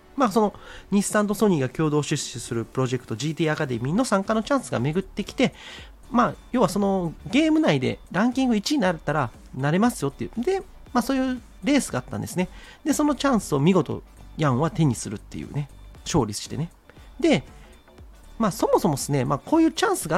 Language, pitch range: Japanese, 130-215 Hz